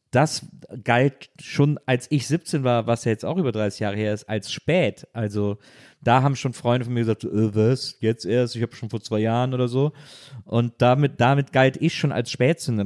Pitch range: 110-135 Hz